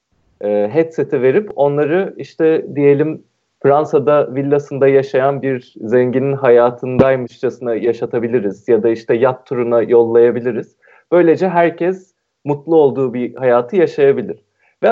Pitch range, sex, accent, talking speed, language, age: 125-185 Hz, male, native, 105 wpm, Turkish, 40-59